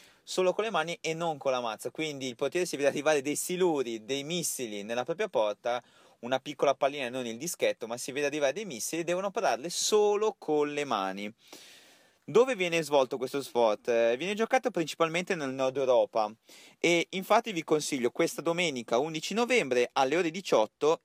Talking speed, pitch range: 180 wpm, 125-180 Hz